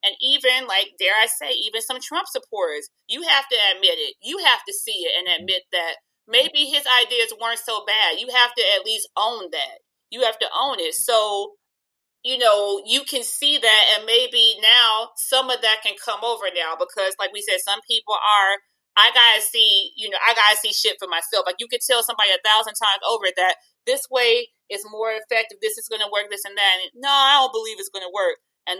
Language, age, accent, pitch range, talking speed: English, 30-49, American, 185-285 Hz, 230 wpm